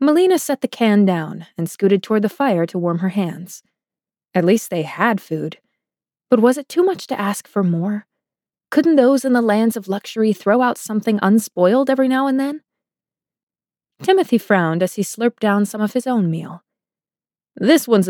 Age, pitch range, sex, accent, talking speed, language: 20-39, 185-260 Hz, female, American, 185 wpm, English